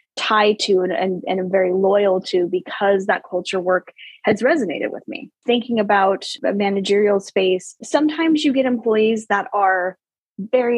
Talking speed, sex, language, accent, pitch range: 160 wpm, female, English, American, 195-230 Hz